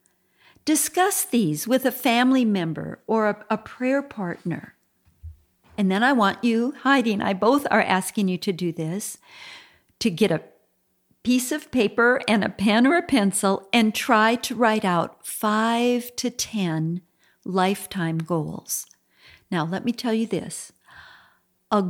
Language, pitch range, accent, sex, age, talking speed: English, 185-245 Hz, American, female, 50-69, 150 wpm